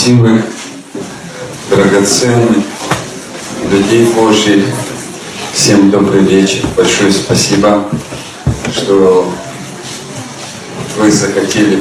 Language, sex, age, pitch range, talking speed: Russian, male, 40-59, 100-115 Hz, 60 wpm